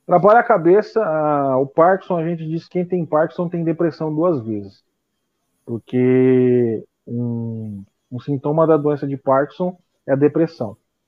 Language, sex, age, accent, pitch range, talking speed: Portuguese, male, 40-59, Brazilian, 125-170 Hz, 150 wpm